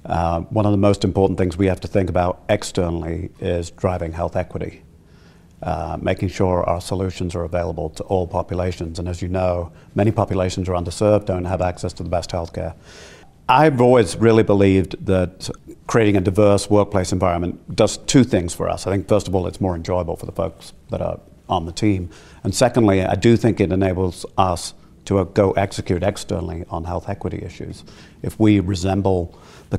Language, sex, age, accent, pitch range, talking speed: English, male, 50-69, British, 90-100 Hz, 185 wpm